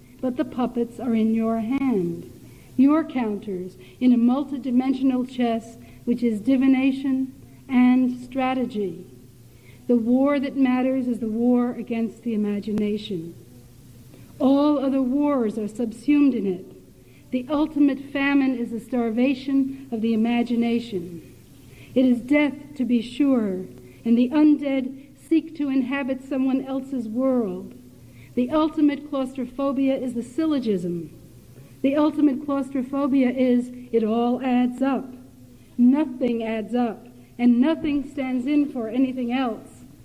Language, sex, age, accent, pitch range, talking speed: English, female, 60-79, American, 225-270 Hz, 125 wpm